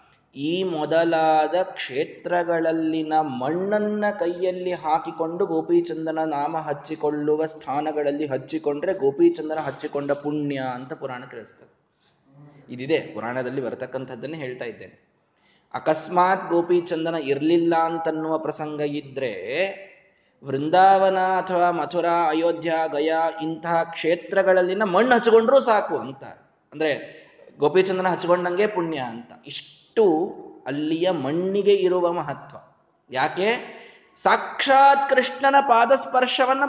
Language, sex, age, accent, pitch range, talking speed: Kannada, male, 20-39, native, 140-185 Hz, 90 wpm